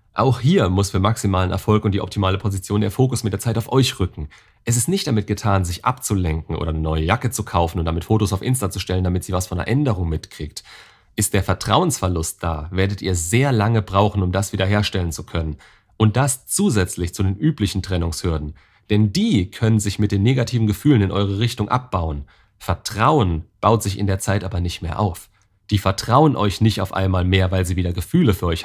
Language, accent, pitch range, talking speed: German, German, 90-115 Hz, 210 wpm